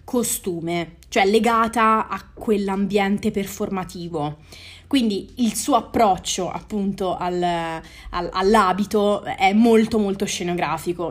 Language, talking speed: Italian, 85 wpm